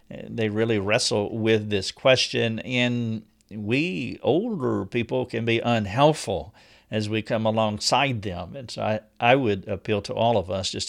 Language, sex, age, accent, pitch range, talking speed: English, male, 50-69, American, 105-120 Hz, 160 wpm